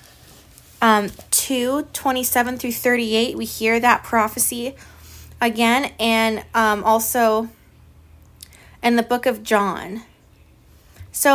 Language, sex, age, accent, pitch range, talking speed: English, female, 20-39, American, 205-245 Hz, 100 wpm